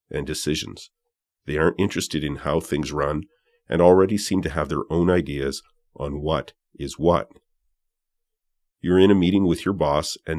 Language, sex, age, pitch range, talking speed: English, male, 40-59, 80-105 Hz, 170 wpm